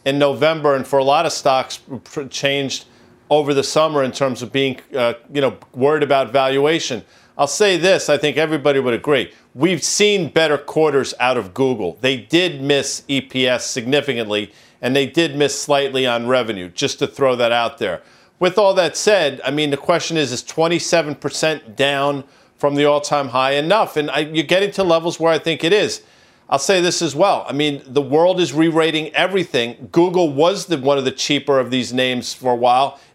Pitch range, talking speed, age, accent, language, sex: 135-165 Hz, 195 wpm, 40-59, American, English, male